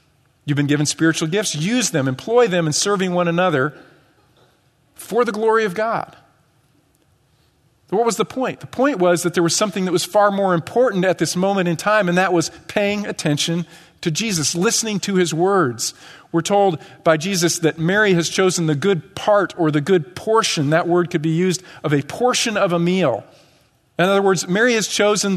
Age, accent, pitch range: 40-59, American, 145-190 Hz